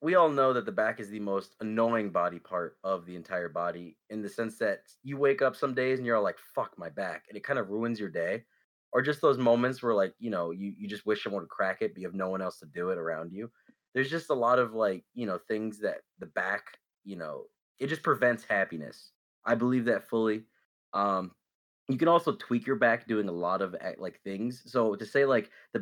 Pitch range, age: 100-115 Hz, 20-39